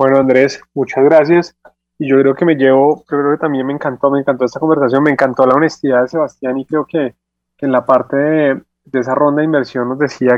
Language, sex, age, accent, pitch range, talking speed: Spanish, male, 20-39, Colombian, 130-155 Hz, 225 wpm